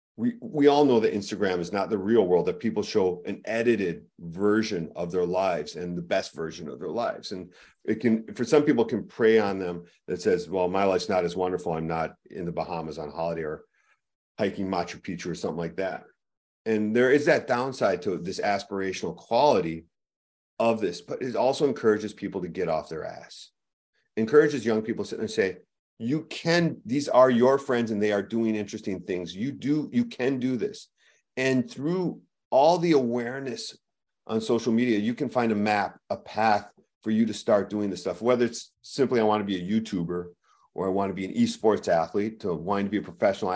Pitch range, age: 95-125 Hz, 40-59